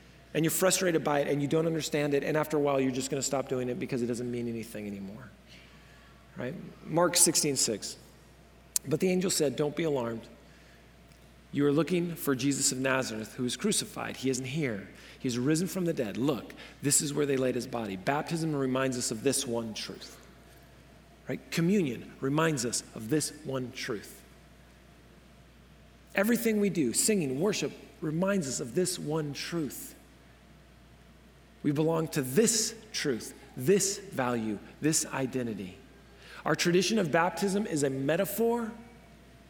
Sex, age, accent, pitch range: male, 40-59, American, 130-175 Hz